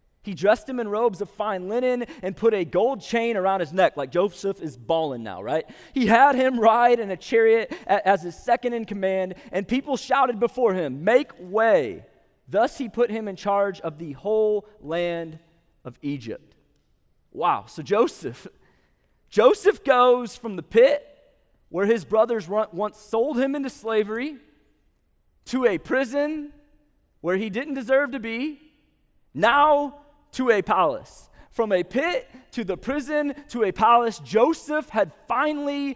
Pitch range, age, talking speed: 200-255 Hz, 30-49, 155 wpm